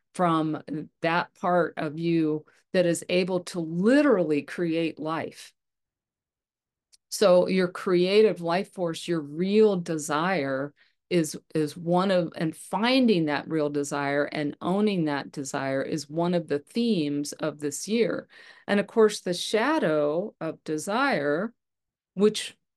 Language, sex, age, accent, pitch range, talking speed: English, female, 50-69, American, 155-185 Hz, 130 wpm